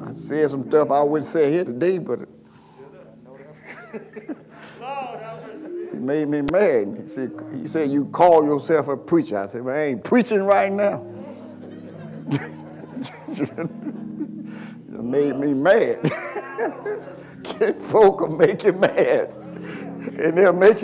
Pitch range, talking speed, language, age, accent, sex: 165-265 Hz, 125 wpm, English, 50-69, American, male